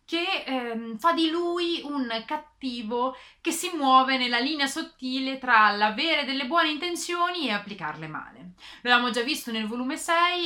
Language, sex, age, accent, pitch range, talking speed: Italian, female, 20-39, native, 220-285 Hz, 155 wpm